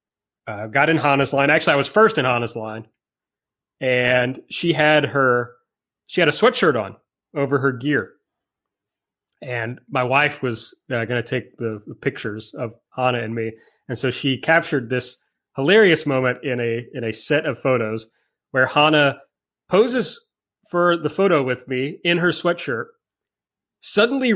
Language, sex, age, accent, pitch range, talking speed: English, male, 30-49, American, 125-160 Hz, 160 wpm